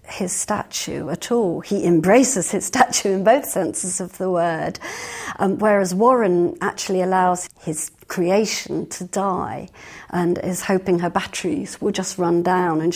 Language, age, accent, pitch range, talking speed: English, 50-69, British, 180-215 Hz, 155 wpm